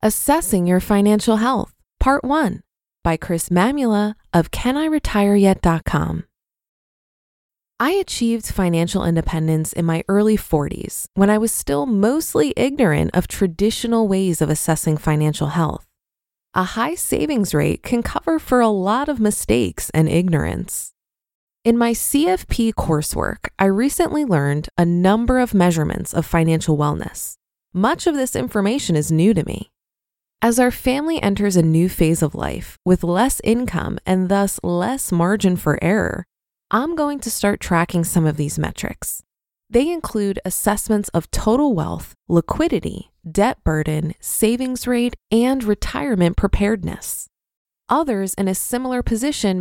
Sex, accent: female, American